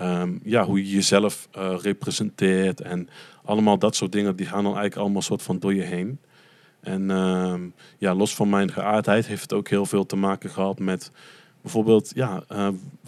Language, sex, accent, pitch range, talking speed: Dutch, male, Dutch, 95-105 Hz, 190 wpm